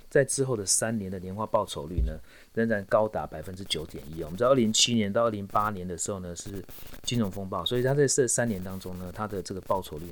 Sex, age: male, 30-49